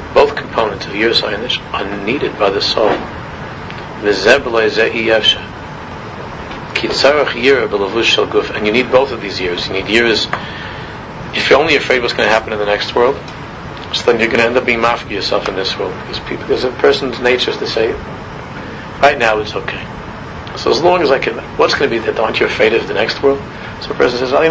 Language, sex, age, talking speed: English, male, 40-59, 195 wpm